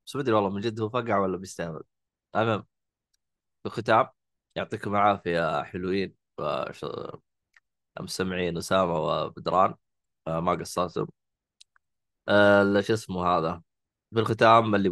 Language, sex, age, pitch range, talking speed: Arabic, male, 20-39, 90-110 Hz, 115 wpm